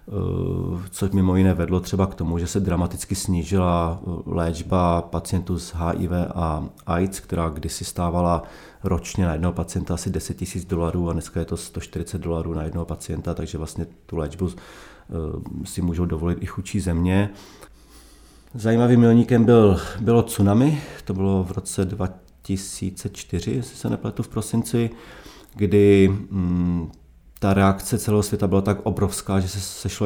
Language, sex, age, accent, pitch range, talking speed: Czech, male, 30-49, native, 85-100 Hz, 145 wpm